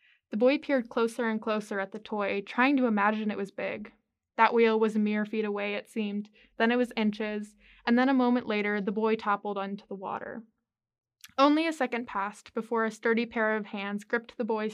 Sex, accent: female, American